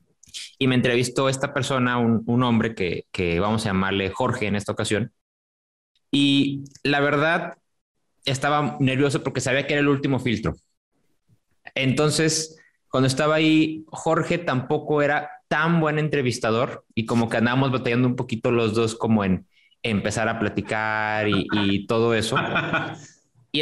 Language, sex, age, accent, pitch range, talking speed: Spanish, male, 20-39, Mexican, 115-150 Hz, 150 wpm